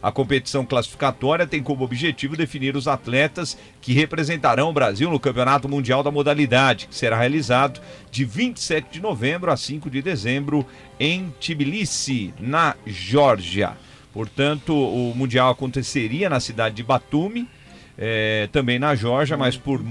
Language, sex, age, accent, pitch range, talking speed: Portuguese, male, 40-59, Brazilian, 120-150 Hz, 140 wpm